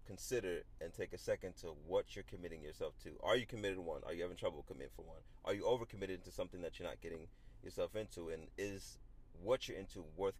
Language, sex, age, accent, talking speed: English, male, 30-49, American, 230 wpm